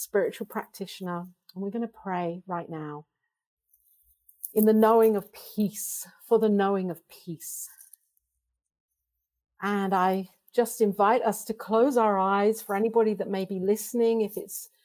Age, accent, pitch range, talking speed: 50-69, British, 150-215 Hz, 145 wpm